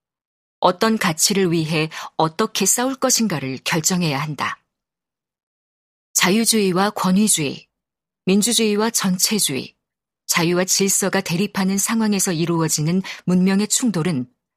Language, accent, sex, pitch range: Korean, native, female, 165-210 Hz